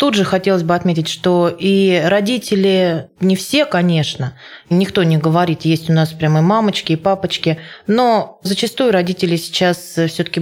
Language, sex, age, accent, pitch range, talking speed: Russian, female, 20-39, native, 160-195 Hz, 155 wpm